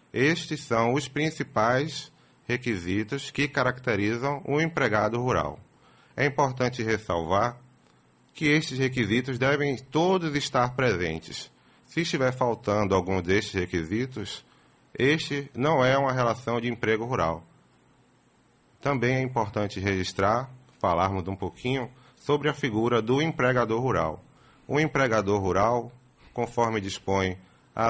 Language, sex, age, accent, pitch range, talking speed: Portuguese, male, 30-49, Brazilian, 95-130 Hz, 115 wpm